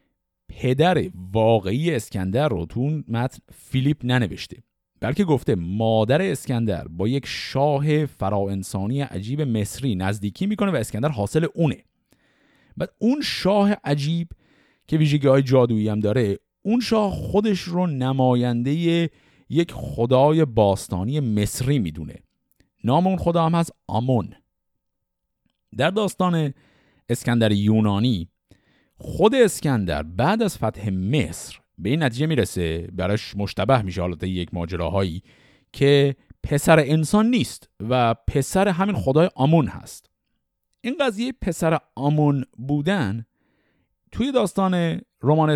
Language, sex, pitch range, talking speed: Persian, male, 105-165 Hz, 115 wpm